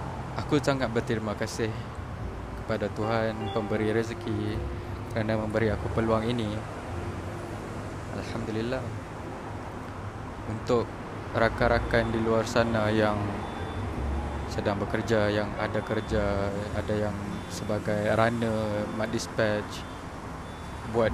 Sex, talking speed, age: male, 90 wpm, 20-39